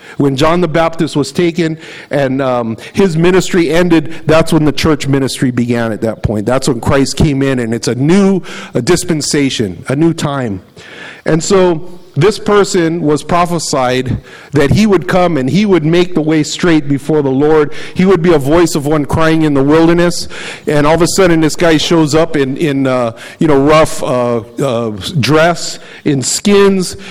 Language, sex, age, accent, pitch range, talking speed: English, male, 50-69, American, 145-180 Hz, 185 wpm